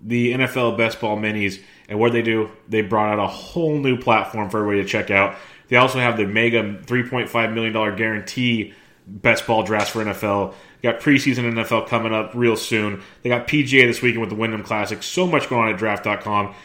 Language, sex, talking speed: English, male, 200 wpm